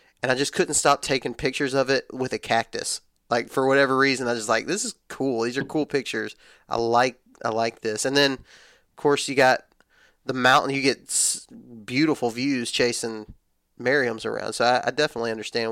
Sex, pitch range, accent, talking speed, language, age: male, 115-135 Hz, American, 200 wpm, English, 30-49